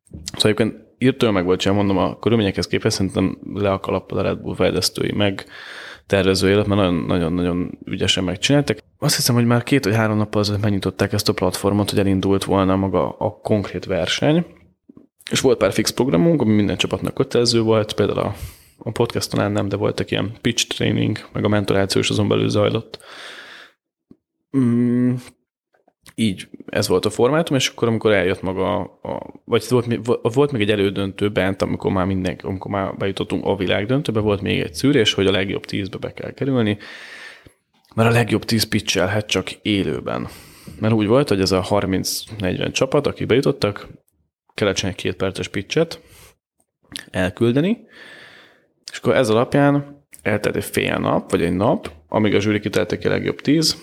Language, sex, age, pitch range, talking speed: Hungarian, male, 20-39, 95-120 Hz, 160 wpm